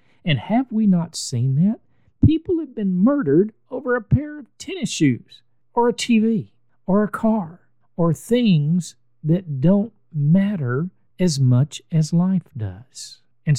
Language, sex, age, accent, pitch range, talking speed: English, male, 50-69, American, 125-185 Hz, 145 wpm